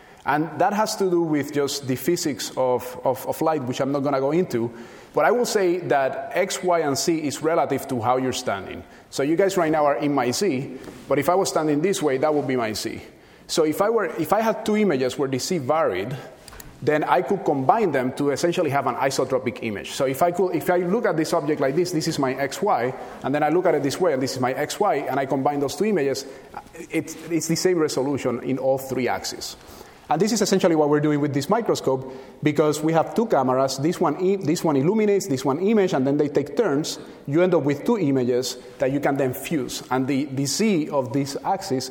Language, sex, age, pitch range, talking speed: English, male, 30-49, 135-175 Hz, 245 wpm